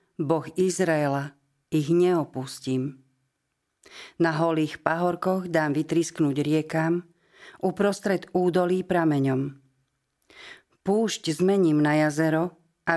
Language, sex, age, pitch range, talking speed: Slovak, female, 40-59, 145-180 Hz, 85 wpm